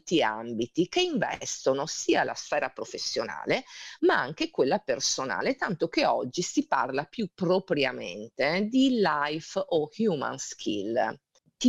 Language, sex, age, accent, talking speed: Italian, female, 40-59, native, 125 wpm